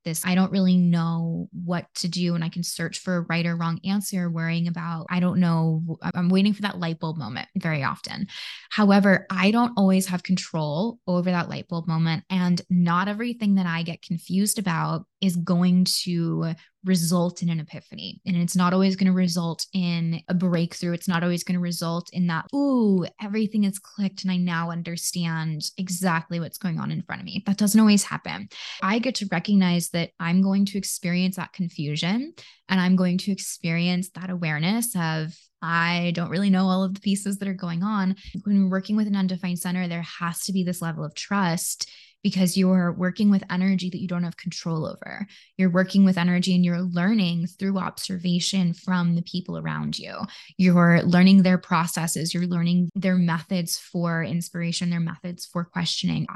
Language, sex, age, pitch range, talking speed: English, female, 20-39, 170-190 Hz, 190 wpm